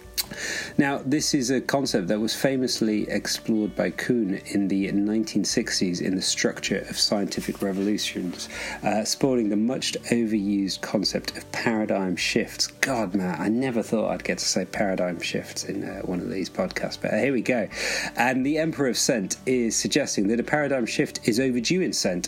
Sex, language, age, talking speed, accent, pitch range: male, English, 30-49, 175 wpm, British, 95-120 Hz